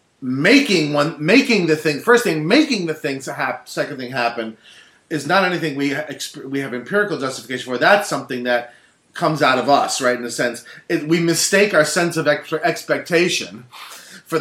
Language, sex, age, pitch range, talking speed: English, male, 40-59, 130-180 Hz, 180 wpm